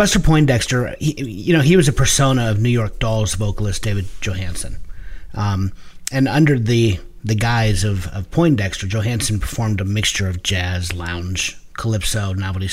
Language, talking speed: English, 155 wpm